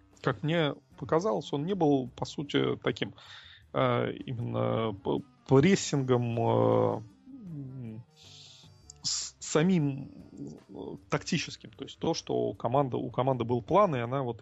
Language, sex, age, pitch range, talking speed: Russian, male, 30-49, 115-150 Hz, 110 wpm